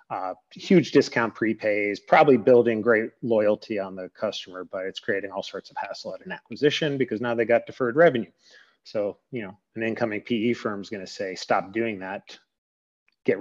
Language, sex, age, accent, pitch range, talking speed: English, male, 30-49, American, 110-125 Hz, 185 wpm